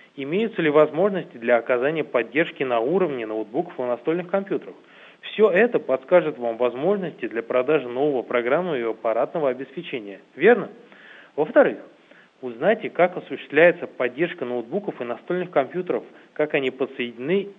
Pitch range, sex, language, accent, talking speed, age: 125-175 Hz, male, Russian, native, 125 wpm, 20-39